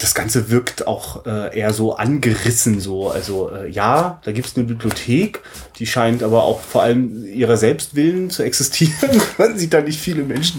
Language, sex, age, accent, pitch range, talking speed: German, male, 30-49, German, 120-155 Hz, 175 wpm